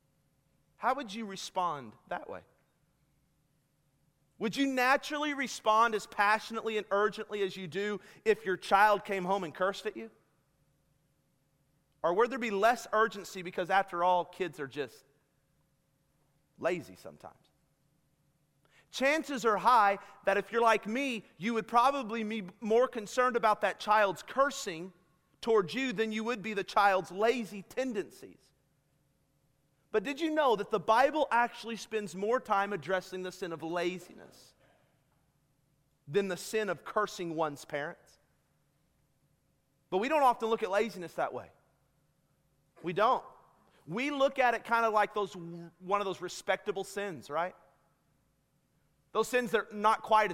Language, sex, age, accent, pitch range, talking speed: English, male, 40-59, American, 145-220 Hz, 145 wpm